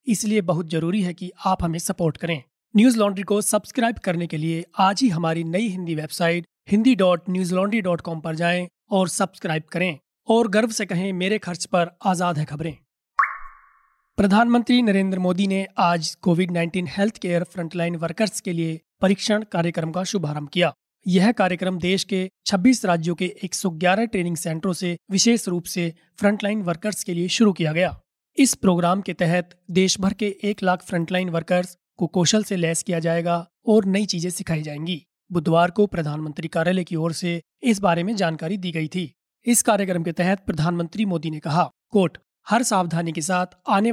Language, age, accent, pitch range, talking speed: Hindi, 30-49, native, 170-200 Hz, 175 wpm